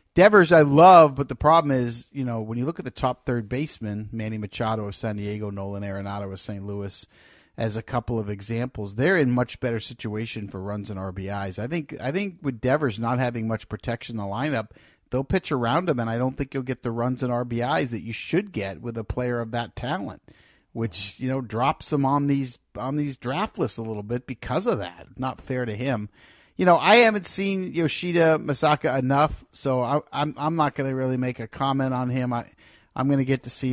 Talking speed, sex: 220 wpm, male